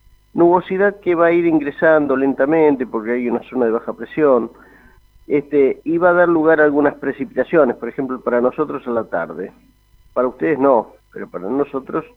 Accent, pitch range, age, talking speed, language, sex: Argentinian, 110-145 Hz, 50-69, 180 wpm, Spanish, male